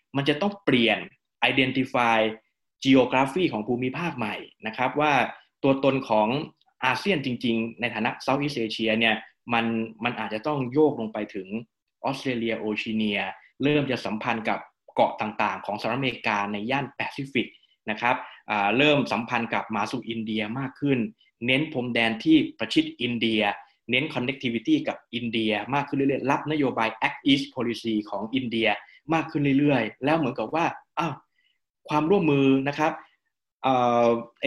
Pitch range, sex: 110-140 Hz, male